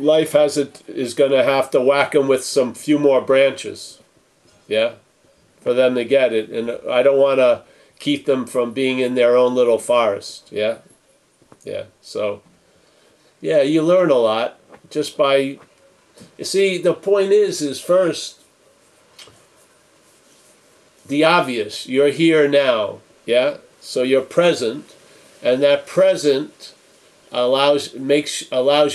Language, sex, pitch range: English, male, 125-155 Hz